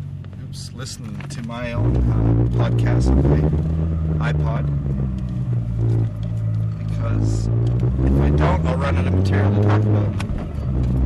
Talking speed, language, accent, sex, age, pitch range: 110 wpm, English, American, male, 30-49, 75-120 Hz